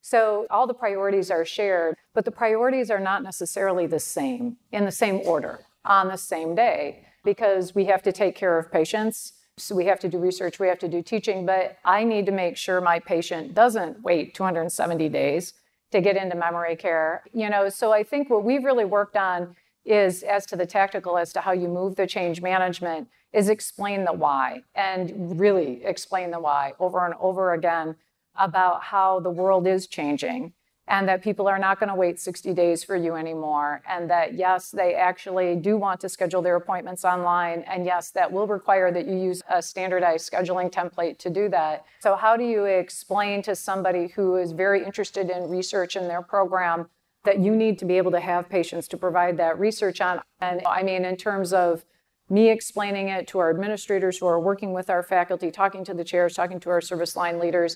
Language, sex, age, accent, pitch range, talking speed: English, female, 40-59, American, 175-200 Hz, 205 wpm